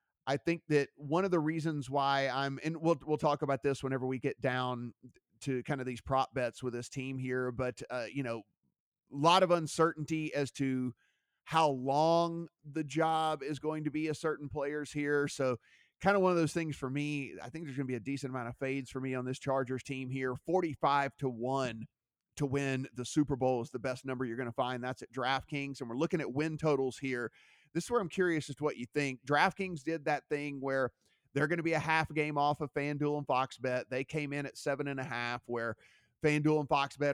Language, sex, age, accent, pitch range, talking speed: English, male, 30-49, American, 130-155 Hz, 225 wpm